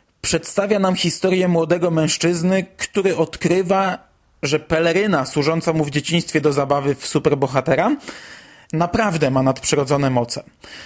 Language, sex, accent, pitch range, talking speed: Polish, male, native, 155-185 Hz, 115 wpm